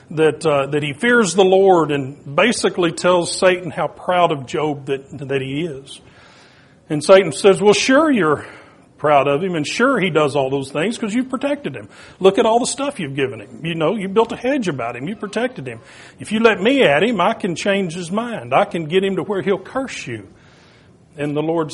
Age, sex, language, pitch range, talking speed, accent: 40-59, male, English, 155-200 Hz, 225 wpm, American